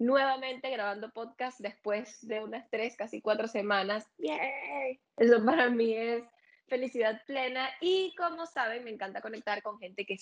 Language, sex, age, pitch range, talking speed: Spanish, female, 10-29, 205-250 Hz, 155 wpm